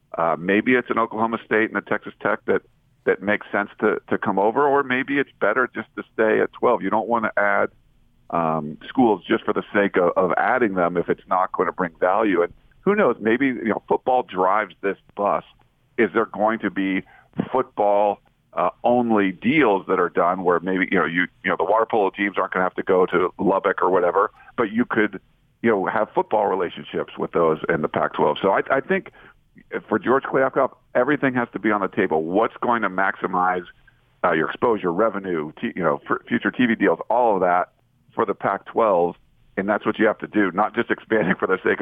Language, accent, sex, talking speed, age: English, American, male, 220 wpm, 50-69